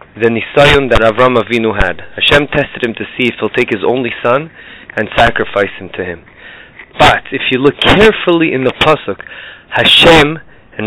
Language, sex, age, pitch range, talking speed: English, male, 30-49, 125-180 Hz, 175 wpm